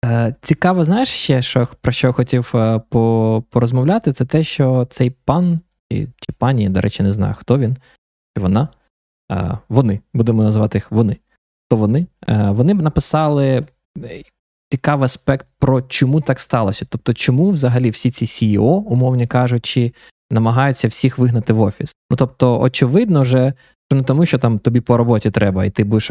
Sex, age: male, 20-39